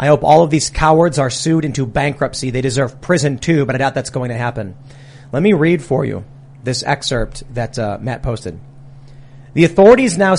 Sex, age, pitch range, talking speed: male, 30-49, 135-160 Hz, 200 wpm